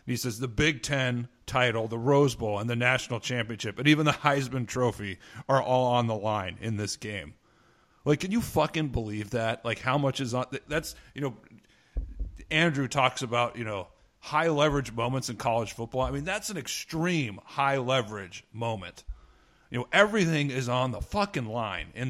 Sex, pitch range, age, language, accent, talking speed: male, 115-145 Hz, 40-59, English, American, 185 wpm